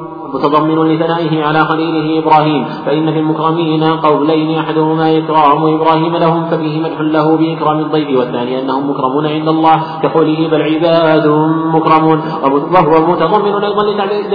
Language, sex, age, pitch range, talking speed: Arabic, male, 40-59, 155-165 Hz, 125 wpm